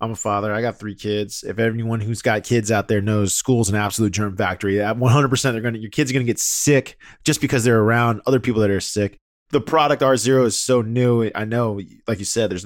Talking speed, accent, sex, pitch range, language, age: 250 wpm, American, male, 90-120 Hz, English, 20-39